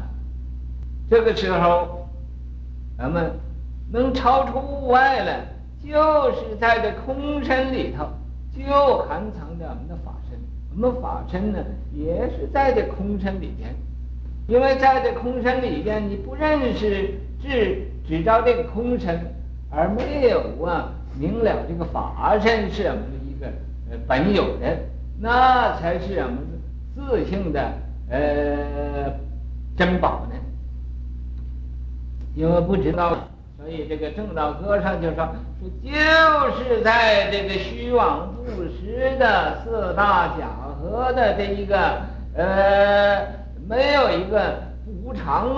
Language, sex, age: Chinese, male, 50-69